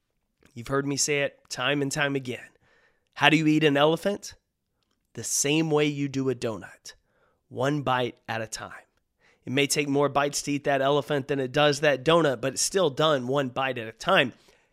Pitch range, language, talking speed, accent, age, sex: 130-160 Hz, English, 205 wpm, American, 30-49, male